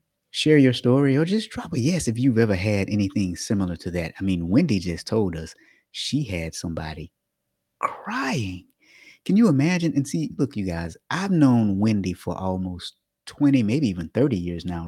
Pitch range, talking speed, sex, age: 90-120 Hz, 180 wpm, male, 30-49